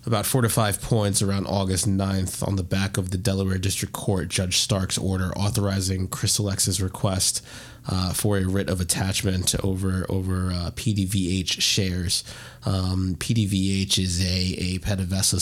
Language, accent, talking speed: English, American, 155 wpm